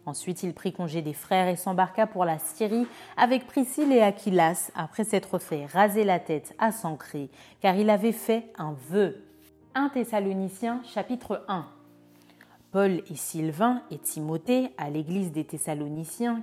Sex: female